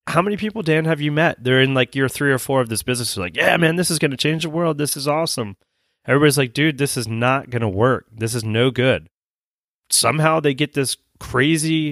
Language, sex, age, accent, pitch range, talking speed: English, male, 30-49, American, 115-150 Hz, 235 wpm